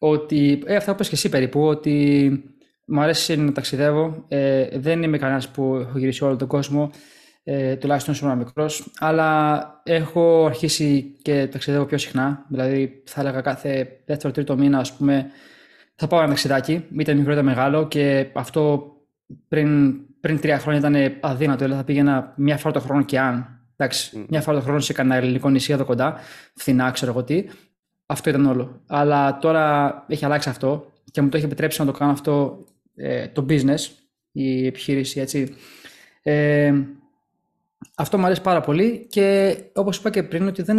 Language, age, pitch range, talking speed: Greek, 20-39, 140-165 Hz, 170 wpm